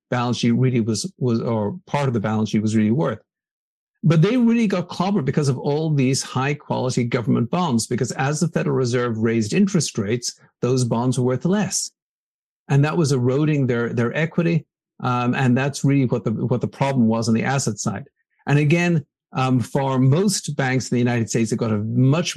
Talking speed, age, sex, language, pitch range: 200 wpm, 50-69, male, English, 120-155 Hz